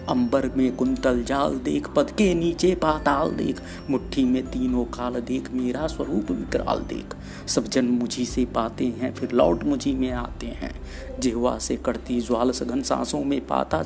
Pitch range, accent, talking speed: 120-175 Hz, native, 170 wpm